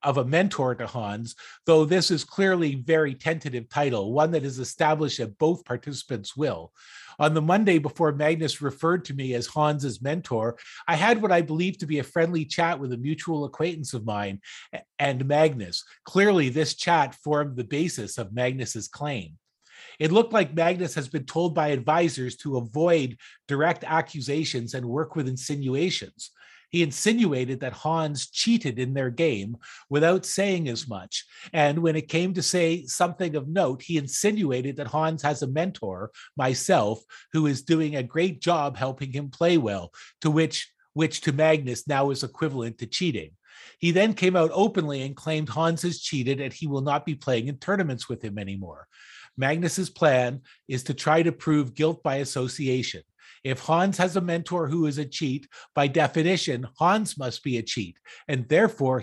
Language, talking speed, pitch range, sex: English, 175 wpm, 130-165 Hz, male